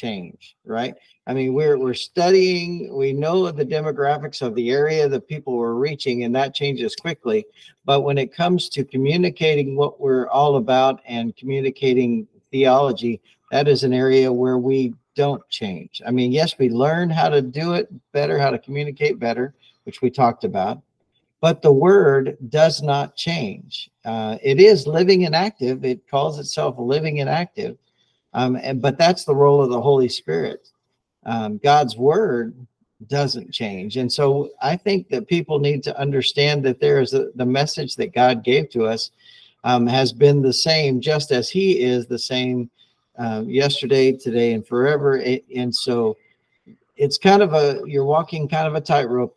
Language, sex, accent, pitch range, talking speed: English, male, American, 125-155 Hz, 170 wpm